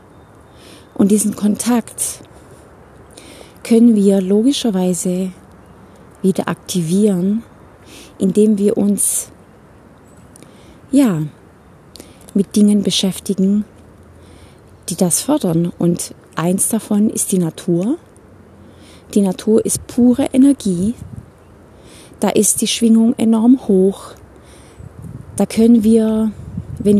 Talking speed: 85 wpm